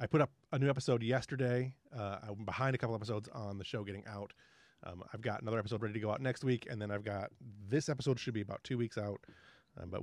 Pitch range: 100-130 Hz